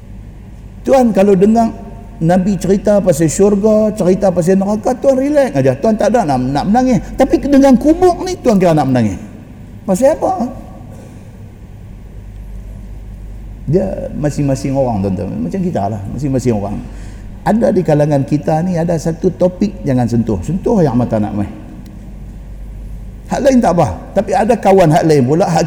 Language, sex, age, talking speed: Malay, male, 50-69, 150 wpm